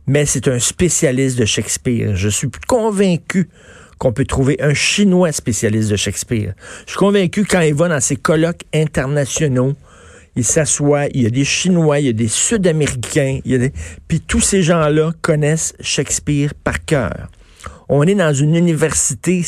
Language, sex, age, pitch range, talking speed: French, male, 50-69, 130-170 Hz, 175 wpm